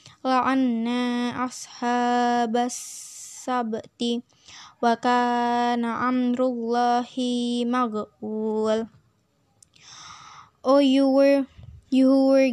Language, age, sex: English, 10-29, female